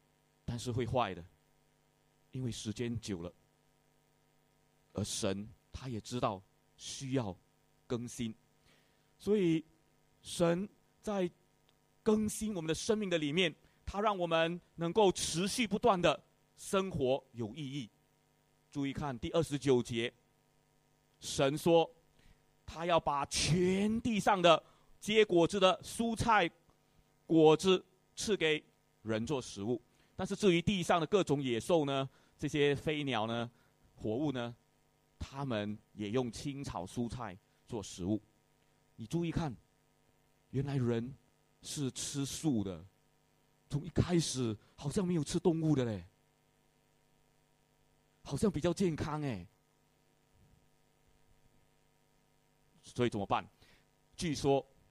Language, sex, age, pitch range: English, male, 30-49, 120-170 Hz